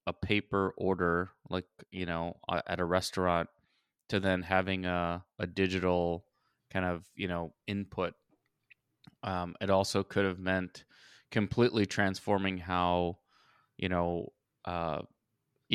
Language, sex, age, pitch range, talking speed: English, male, 20-39, 90-100 Hz, 120 wpm